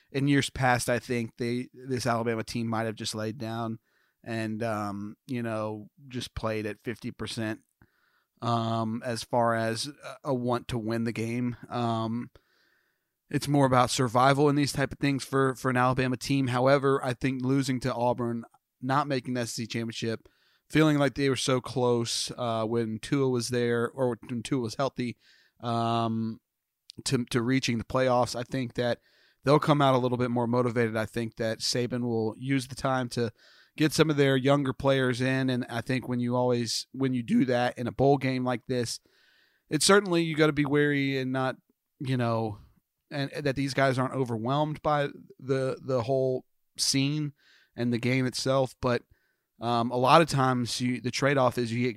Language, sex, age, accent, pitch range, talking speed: English, male, 30-49, American, 115-135 Hz, 190 wpm